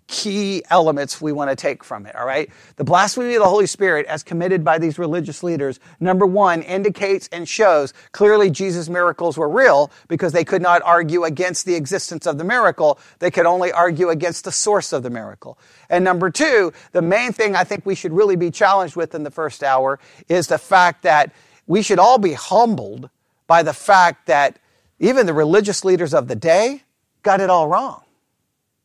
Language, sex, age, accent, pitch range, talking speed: English, male, 40-59, American, 170-230 Hz, 195 wpm